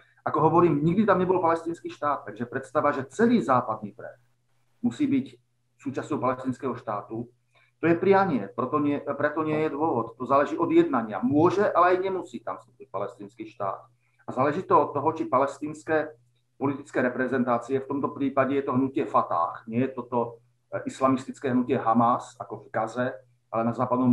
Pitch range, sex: 120-150 Hz, male